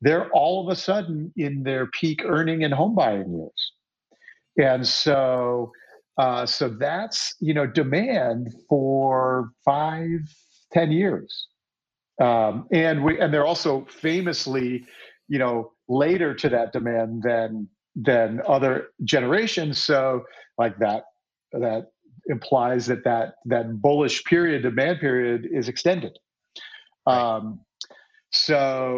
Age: 50-69